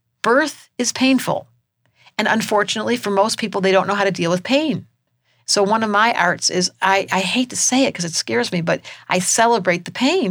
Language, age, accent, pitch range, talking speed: English, 50-69, American, 180-230 Hz, 215 wpm